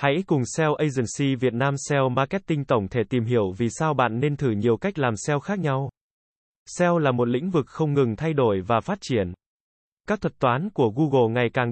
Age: 20-39